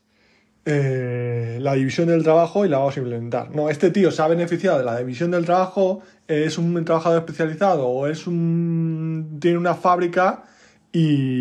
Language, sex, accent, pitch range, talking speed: Spanish, male, Spanish, 135-200 Hz, 175 wpm